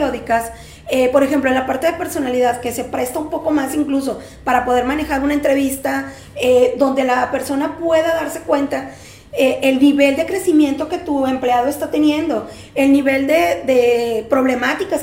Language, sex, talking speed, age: Spanish, female, 170 wpm, 40-59